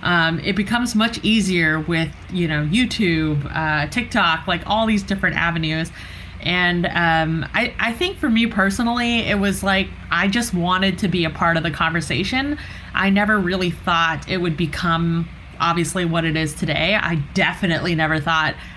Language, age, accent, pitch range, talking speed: English, 20-39, American, 160-190 Hz, 170 wpm